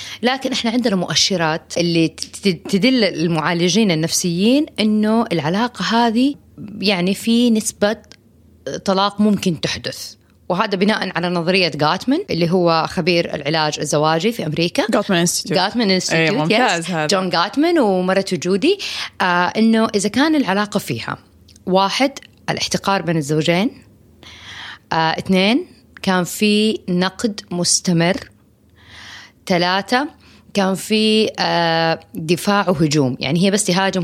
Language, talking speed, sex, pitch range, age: Arabic, 100 wpm, female, 165-225 Hz, 30-49